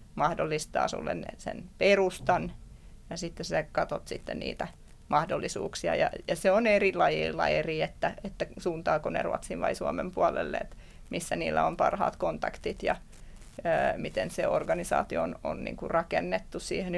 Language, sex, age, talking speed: Finnish, female, 30-49, 150 wpm